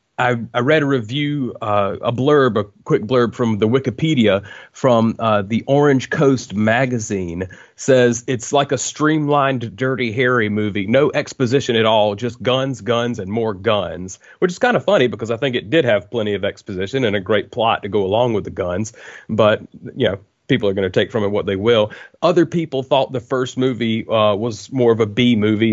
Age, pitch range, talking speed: 30-49, 105-130 Hz, 205 wpm